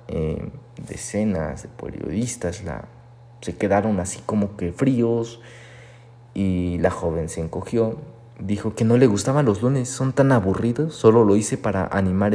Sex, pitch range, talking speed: male, 95-120 Hz, 150 wpm